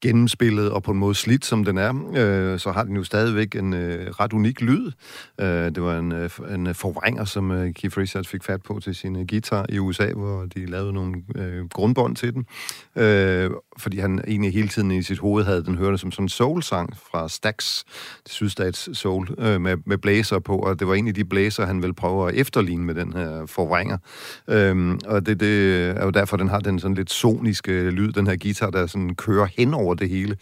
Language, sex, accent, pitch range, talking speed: Danish, male, native, 90-105 Hz, 215 wpm